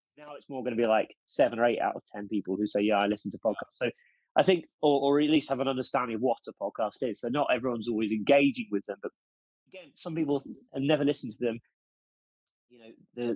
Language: English